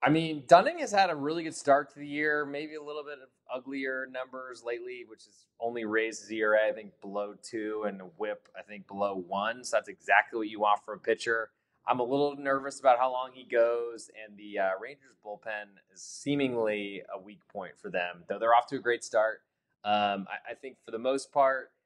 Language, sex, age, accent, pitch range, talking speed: English, male, 20-39, American, 105-135 Hz, 220 wpm